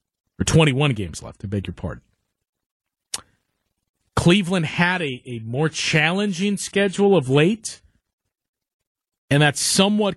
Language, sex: English, male